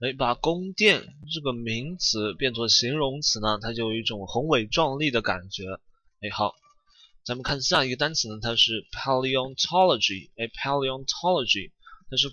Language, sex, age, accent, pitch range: Chinese, male, 20-39, native, 115-155 Hz